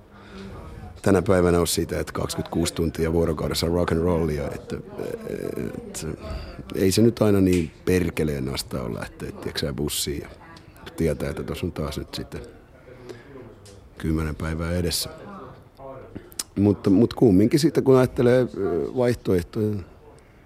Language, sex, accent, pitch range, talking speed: Finnish, male, native, 80-100 Hz, 125 wpm